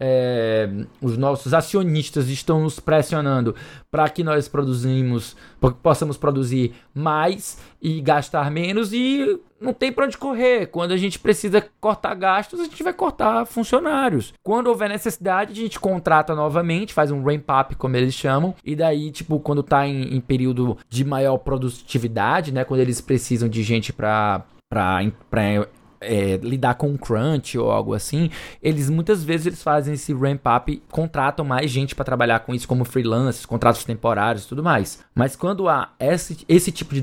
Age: 20-39